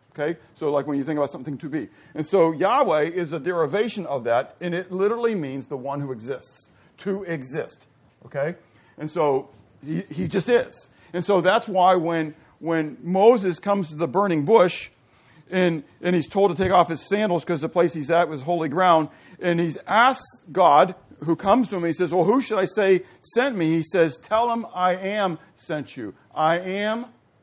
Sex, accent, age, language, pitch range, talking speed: male, American, 50-69, English, 155-195 Hz, 200 wpm